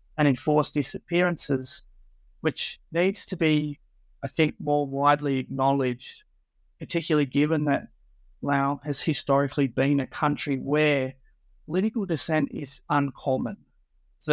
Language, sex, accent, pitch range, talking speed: English, male, Australian, 130-150 Hz, 115 wpm